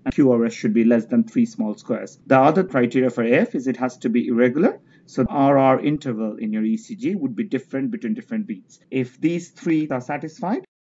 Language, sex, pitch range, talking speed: English, male, 130-200 Hz, 200 wpm